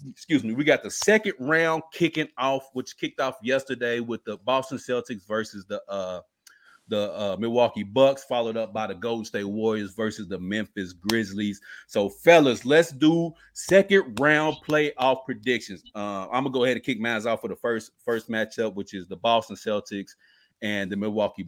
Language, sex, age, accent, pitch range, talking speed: English, male, 30-49, American, 110-145 Hz, 185 wpm